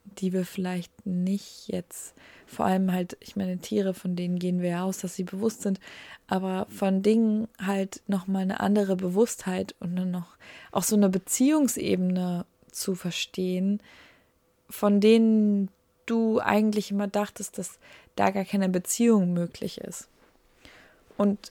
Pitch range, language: 185-220 Hz, German